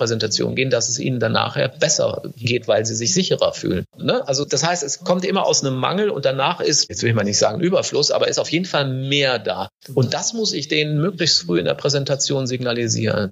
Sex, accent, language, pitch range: male, German, German, 130-170 Hz